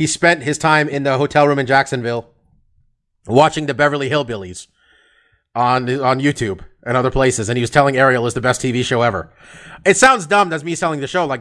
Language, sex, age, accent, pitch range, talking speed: English, male, 30-49, American, 130-165 Hz, 210 wpm